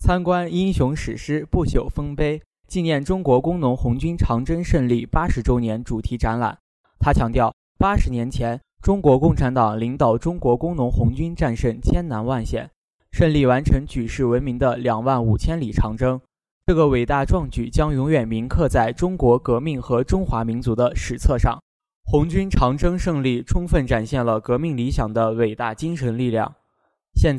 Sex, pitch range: male, 120-155 Hz